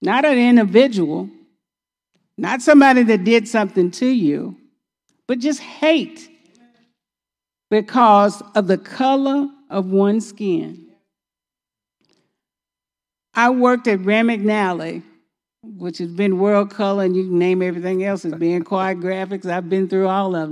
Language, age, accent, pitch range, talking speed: English, 50-69, American, 190-245 Hz, 130 wpm